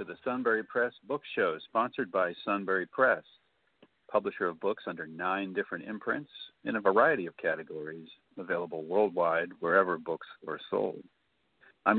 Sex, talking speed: male, 140 wpm